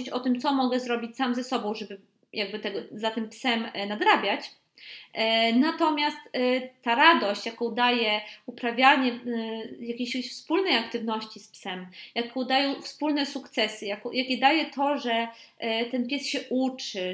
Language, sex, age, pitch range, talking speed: Polish, female, 20-39, 230-285 Hz, 135 wpm